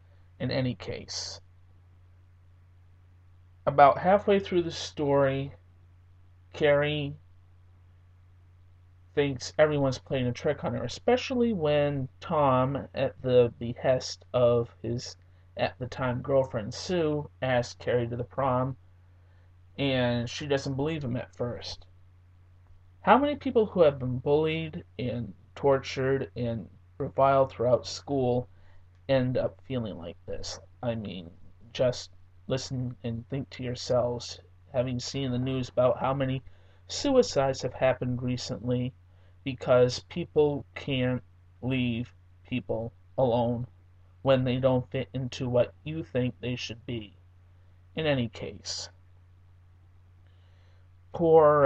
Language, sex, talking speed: English, male, 115 wpm